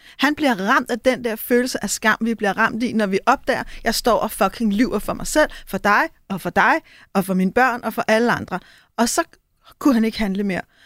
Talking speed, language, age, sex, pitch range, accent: 250 wpm, Danish, 30-49, female, 220-255 Hz, native